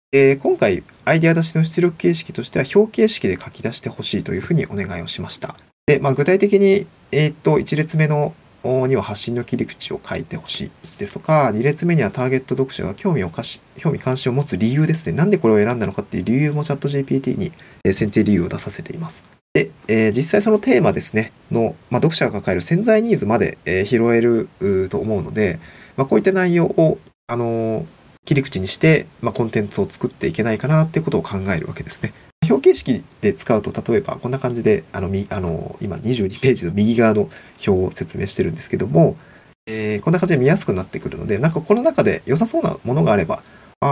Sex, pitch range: male, 115-175 Hz